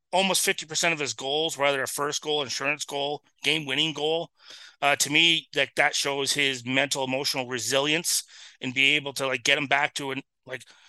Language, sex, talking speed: English, male, 195 wpm